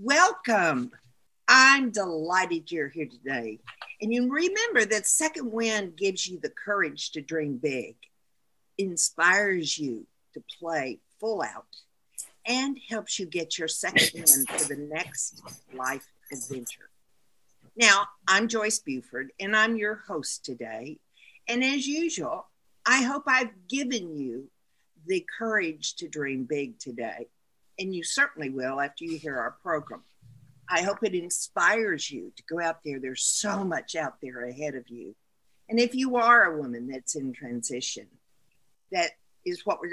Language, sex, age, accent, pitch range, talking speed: English, female, 50-69, American, 145-225 Hz, 150 wpm